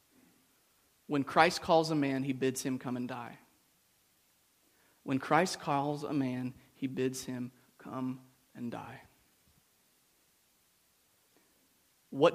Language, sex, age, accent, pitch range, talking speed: English, male, 30-49, American, 140-160 Hz, 110 wpm